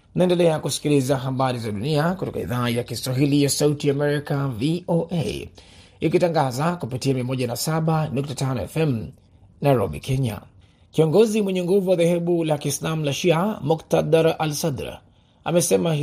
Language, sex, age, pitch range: Swahili, male, 30-49, 125-160 Hz